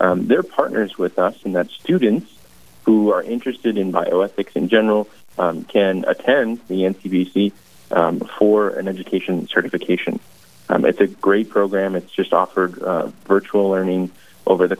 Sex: male